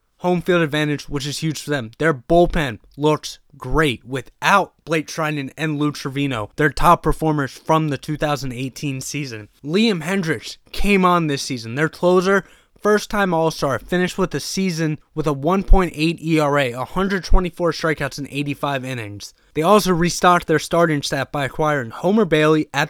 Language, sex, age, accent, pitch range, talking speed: English, male, 20-39, American, 140-170 Hz, 150 wpm